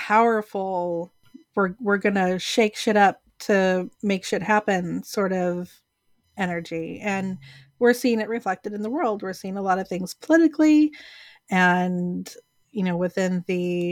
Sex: female